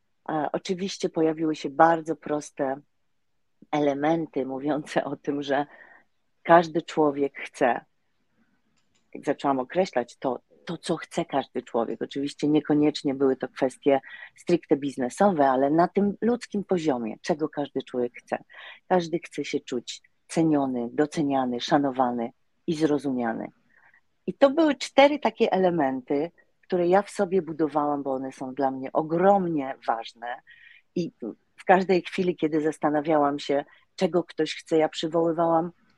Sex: female